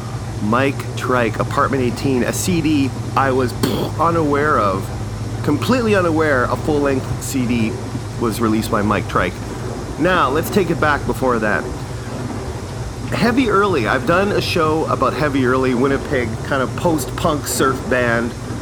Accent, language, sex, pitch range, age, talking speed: American, English, male, 120-140 Hz, 30-49, 135 wpm